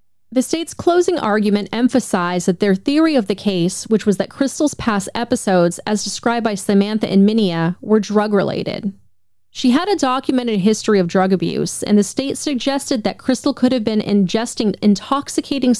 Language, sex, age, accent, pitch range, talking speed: English, female, 30-49, American, 195-250 Hz, 165 wpm